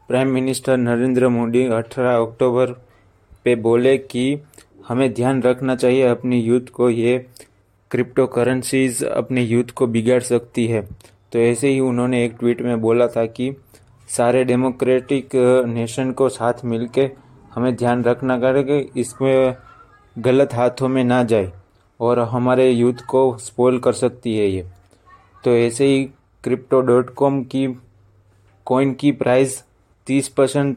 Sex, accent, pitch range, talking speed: male, native, 115-130 Hz, 135 wpm